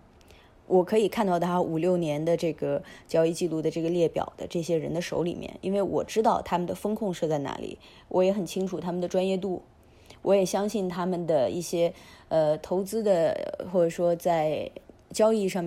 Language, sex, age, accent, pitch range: Chinese, female, 20-39, native, 160-190 Hz